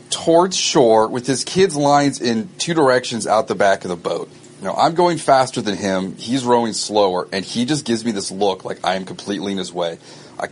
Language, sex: English, male